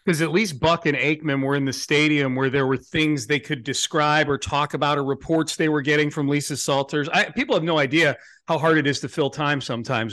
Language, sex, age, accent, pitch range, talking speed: English, male, 40-59, American, 140-170 Hz, 245 wpm